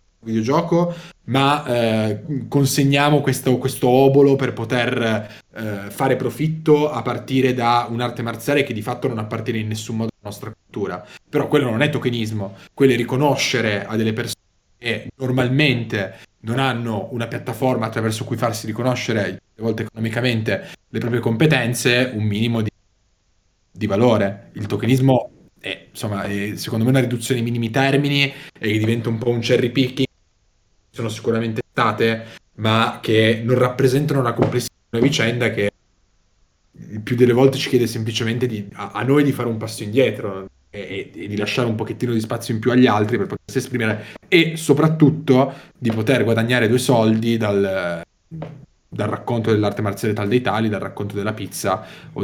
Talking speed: 160 wpm